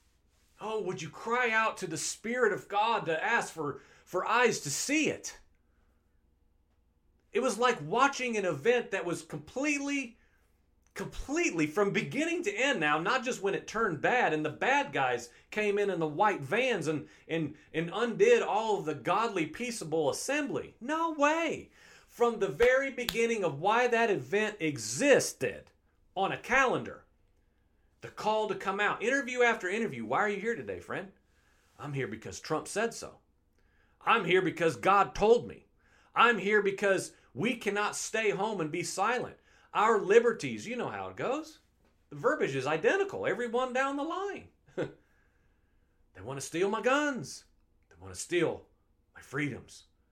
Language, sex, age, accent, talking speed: English, male, 40-59, American, 165 wpm